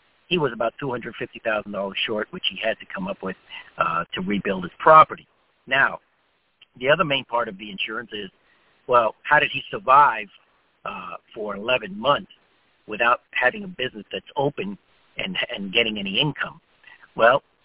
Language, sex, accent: English, male, American